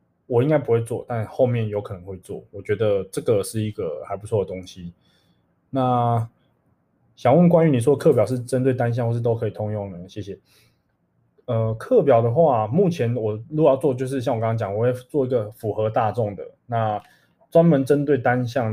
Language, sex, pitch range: Chinese, male, 105-130 Hz